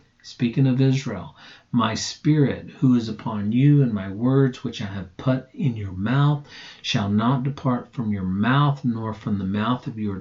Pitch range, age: 105-135 Hz, 50-69